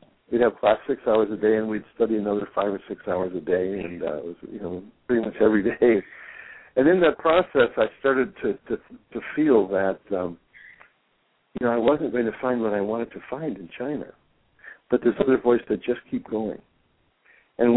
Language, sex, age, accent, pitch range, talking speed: English, male, 60-79, American, 100-120 Hz, 210 wpm